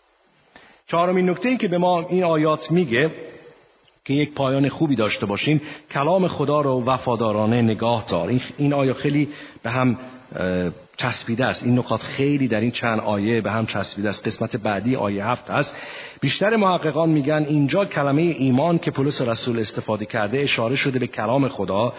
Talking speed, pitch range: 165 wpm, 125-165 Hz